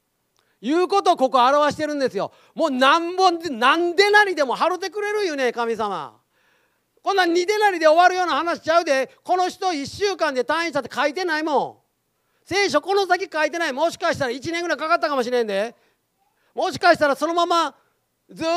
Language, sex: Japanese, male